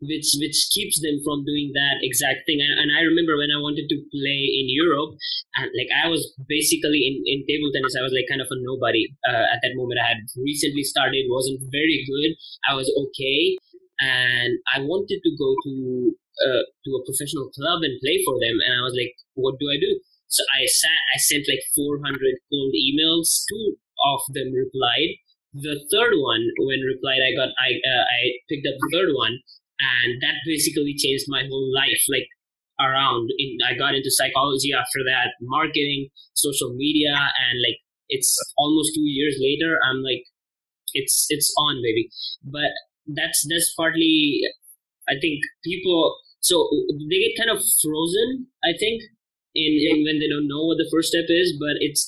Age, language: 20-39, English